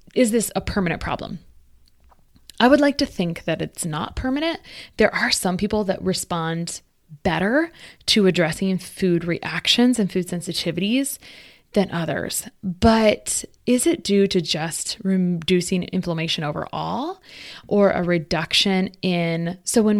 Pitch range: 170-210 Hz